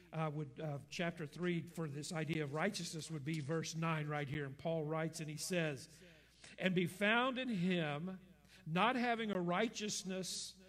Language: English